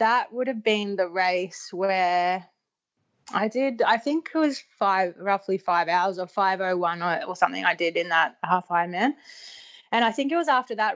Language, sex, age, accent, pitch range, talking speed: English, female, 20-39, Australian, 180-225 Hz, 185 wpm